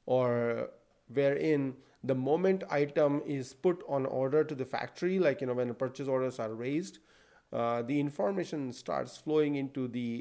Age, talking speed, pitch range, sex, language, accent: 40-59, 165 wpm, 125-150 Hz, male, English, Indian